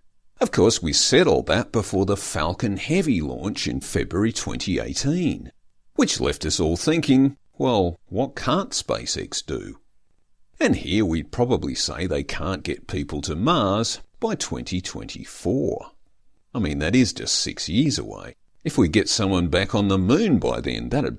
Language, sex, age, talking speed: English, male, 50-69, 160 wpm